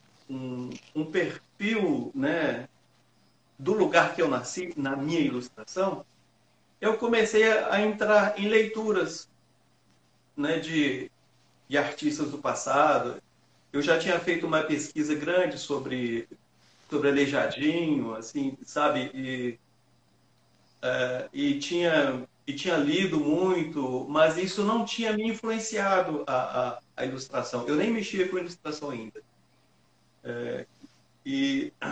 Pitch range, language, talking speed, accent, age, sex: 150-215 Hz, Portuguese, 115 wpm, Brazilian, 40-59, male